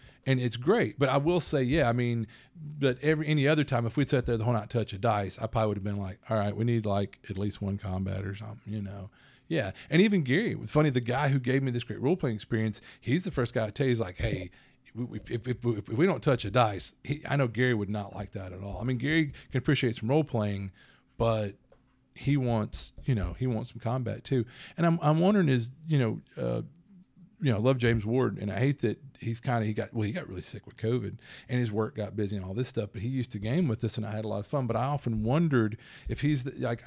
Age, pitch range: 40-59, 110-135 Hz